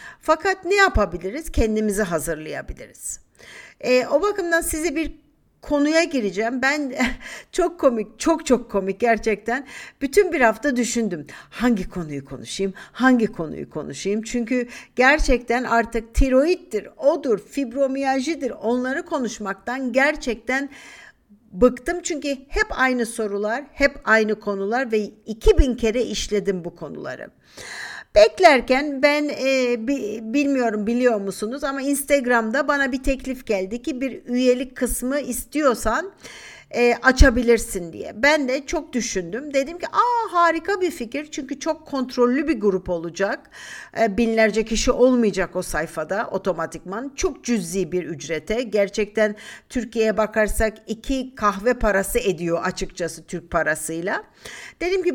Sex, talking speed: female, 120 wpm